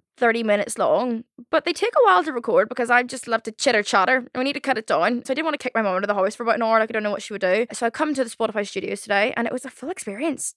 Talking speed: 345 wpm